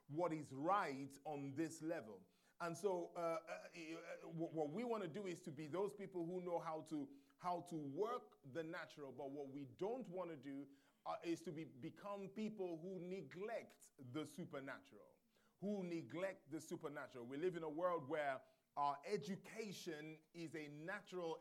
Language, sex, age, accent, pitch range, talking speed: English, male, 30-49, Nigerian, 150-185 Hz, 175 wpm